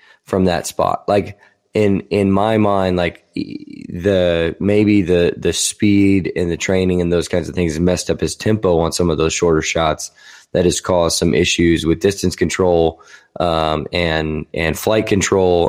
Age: 20-39